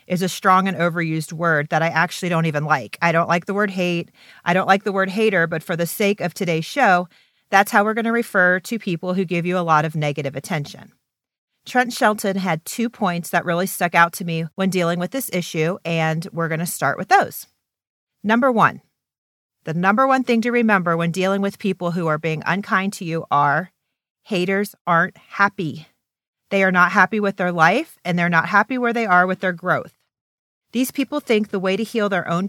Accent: American